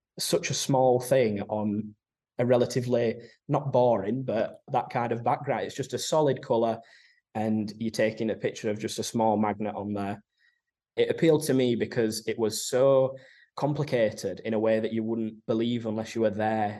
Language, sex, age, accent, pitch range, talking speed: English, male, 10-29, British, 110-125 Hz, 180 wpm